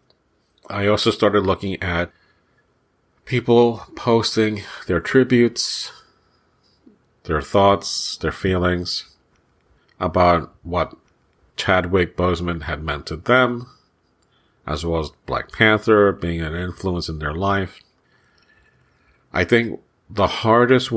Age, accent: 40-59, American